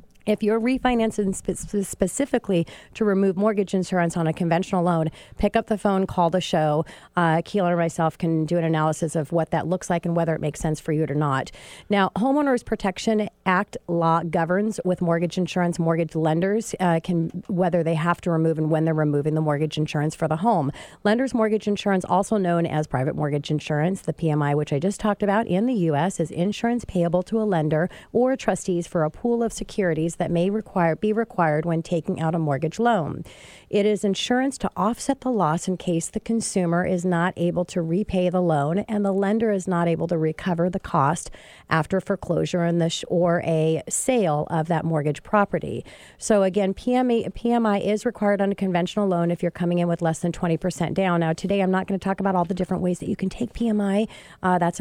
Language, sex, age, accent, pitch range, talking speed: English, female, 40-59, American, 160-200 Hz, 205 wpm